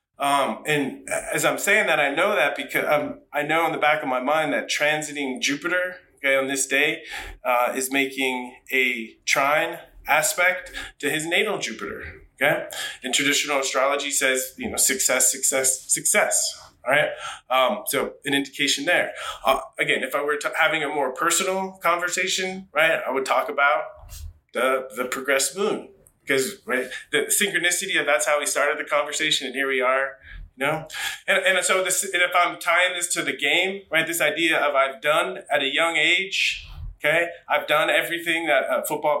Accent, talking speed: American, 180 wpm